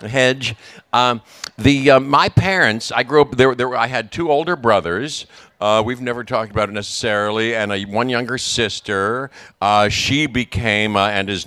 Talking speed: 185 wpm